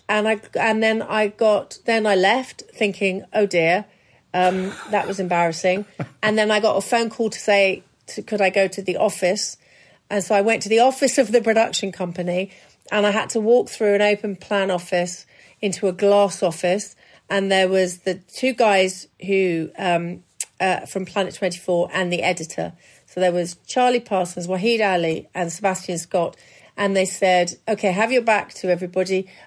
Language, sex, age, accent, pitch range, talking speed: English, female, 40-59, British, 180-215 Hz, 185 wpm